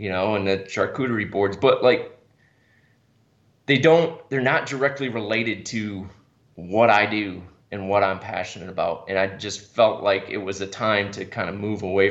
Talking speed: 185 wpm